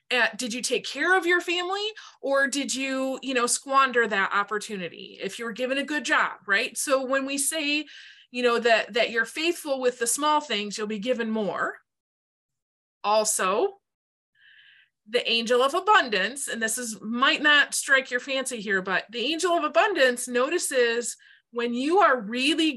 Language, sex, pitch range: English, female, 220-275 Hz